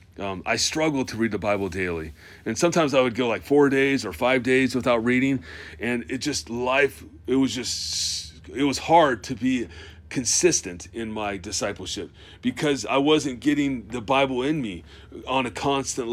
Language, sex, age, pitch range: English, male, 40-59, 105-145 Hz